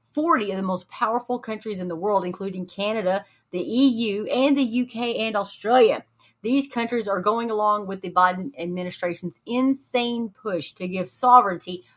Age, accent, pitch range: 30-49, American, 190-250 Hz